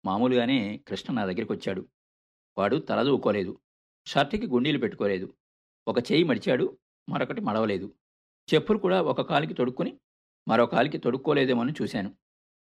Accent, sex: native, male